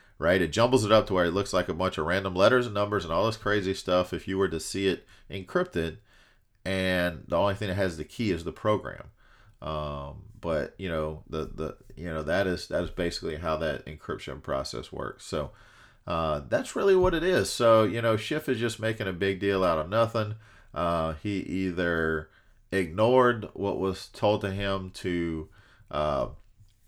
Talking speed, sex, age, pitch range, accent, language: 200 wpm, male, 40-59, 85-110 Hz, American, English